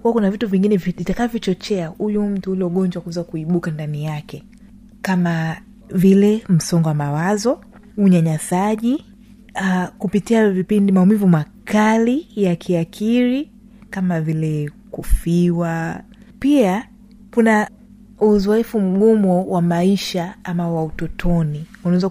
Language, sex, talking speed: Swahili, female, 100 wpm